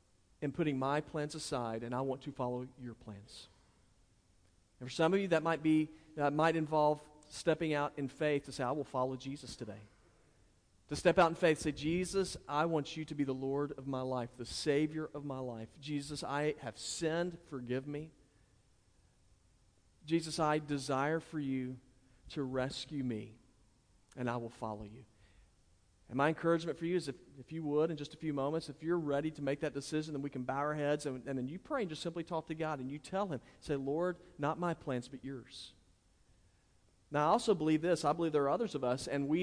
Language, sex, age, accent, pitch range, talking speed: English, male, 40-59, American, 125-155 Hz, 210 wpm